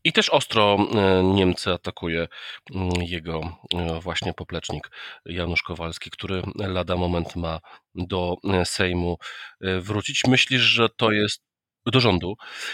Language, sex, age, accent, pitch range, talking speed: Polish, male, 40-59, native, 85-105 Hz, 110 wpm